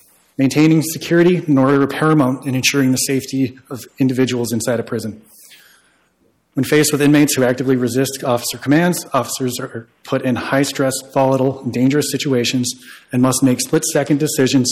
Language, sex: English, male